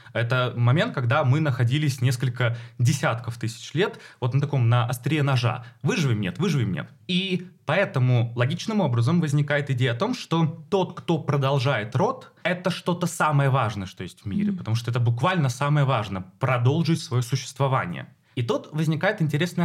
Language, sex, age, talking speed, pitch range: Russian, male, 20-39, 160 wpm, 125-170 Hz